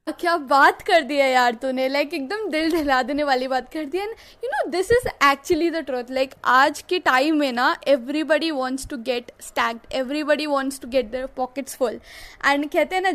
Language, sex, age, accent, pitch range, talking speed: Hindi, female, 20-39, native, 270-340 Hz, 215 wpm